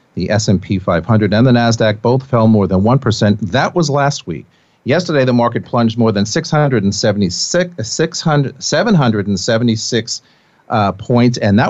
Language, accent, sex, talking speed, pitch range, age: English, American, male, 145 wpm, 105-140 Hz, 40-59